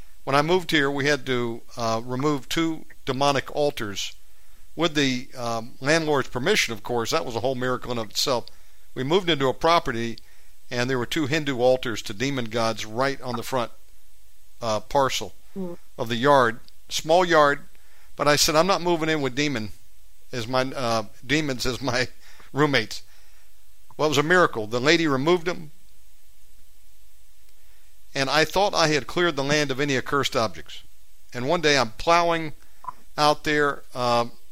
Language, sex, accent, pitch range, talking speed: English, male, American, 120-160 Hz, 170 wpm